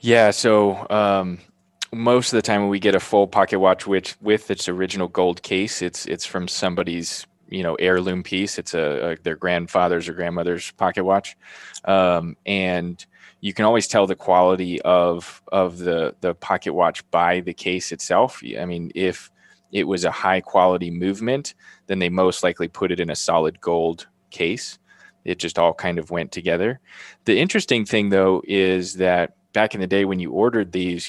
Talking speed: 185 wpm